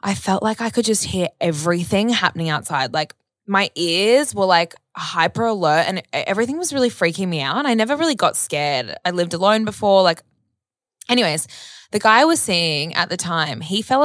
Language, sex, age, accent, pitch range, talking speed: English, female, 20-39, Australian, 165-220 Hz, 195 wpm